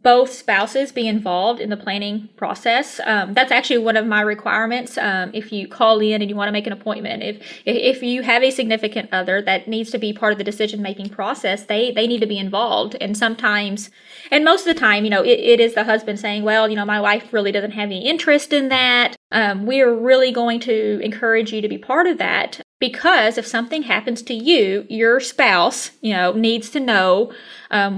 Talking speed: 225 wpm